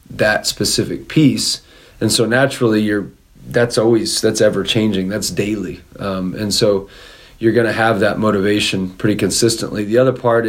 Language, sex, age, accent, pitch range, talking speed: English, male, 40-59, American, 100-115 Hz, 160 wpm